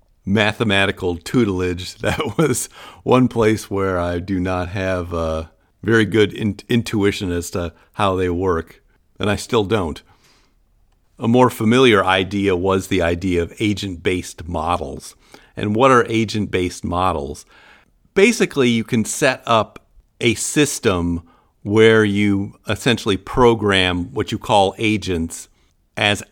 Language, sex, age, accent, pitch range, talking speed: English, male, 50-69, American, 85-110 Hz, 130 wpm